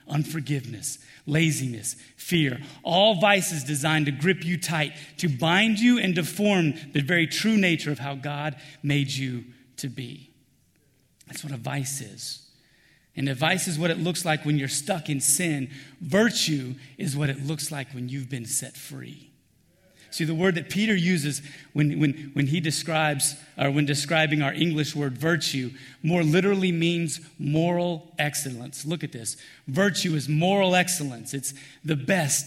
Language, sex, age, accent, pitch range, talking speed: English, male, 30-49, American, 135-165 Hz, 160 wpm